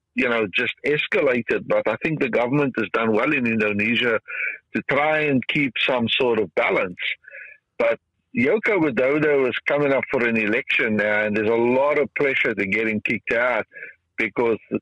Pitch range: 110-130 Hz